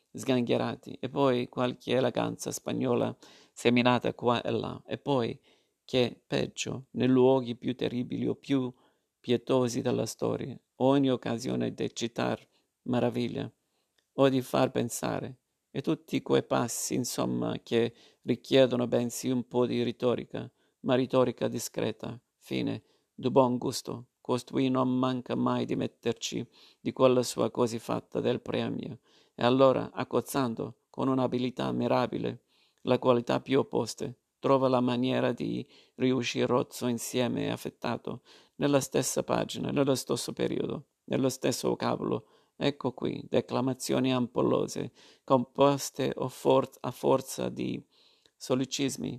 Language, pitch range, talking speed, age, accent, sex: Italian, 120-130 Hz, 125 wpm, 50-69, native, male